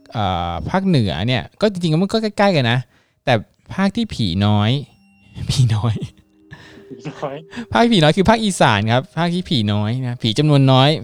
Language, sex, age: Thai, male, 20-39